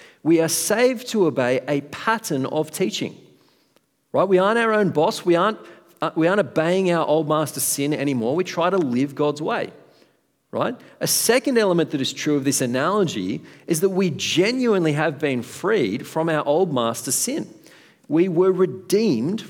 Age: 40-59